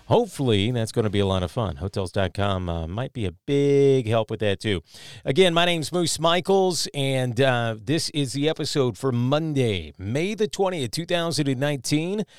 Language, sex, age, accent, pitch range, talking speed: English, male, 40-59, American, 110-150 Hz, 170 wpm